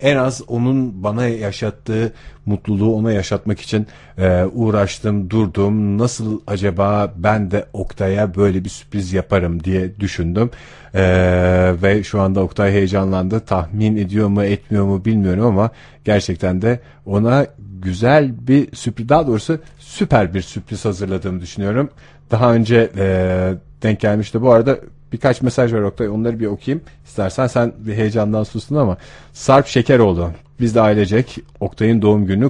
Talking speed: 135 wpm